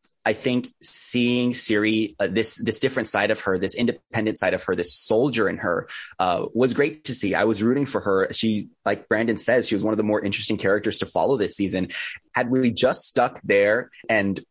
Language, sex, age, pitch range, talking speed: English, male, 20-39, 95-120 Hz, 220 wpm